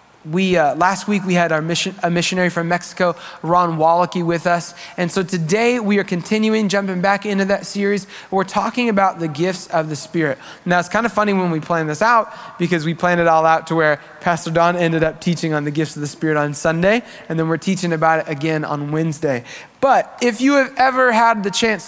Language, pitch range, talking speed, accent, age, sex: English, 165-205 Hz, 220 wpm, American, 20-39, male